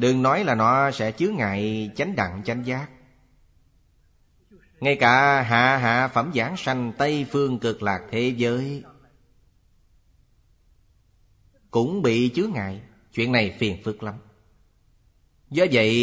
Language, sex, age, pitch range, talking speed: Vietnamese, male, 30-49, 100-135 Hz, 130 wpm